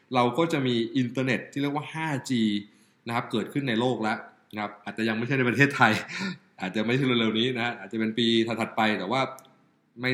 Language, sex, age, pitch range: Thai, male, 20-39, 105-135 Hz